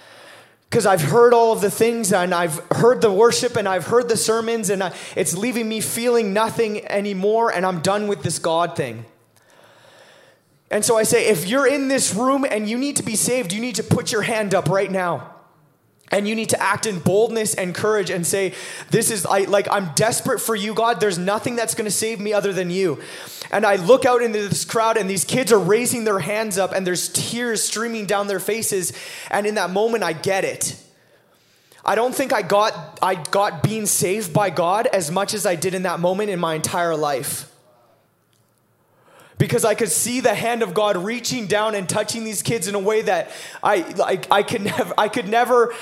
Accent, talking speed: American, 215 wpm